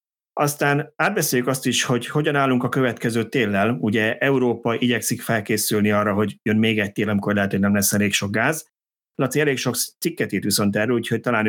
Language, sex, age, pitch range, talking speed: Hungarian, male, 30-49, 100-125 Hz, 190 wpm